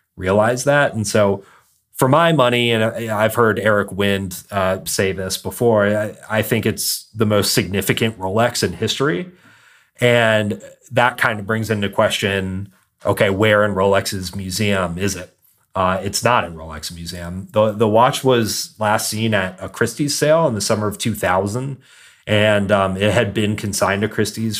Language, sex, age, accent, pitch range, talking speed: English, male, 30-49, American, 95-110 Hz, 170 wpm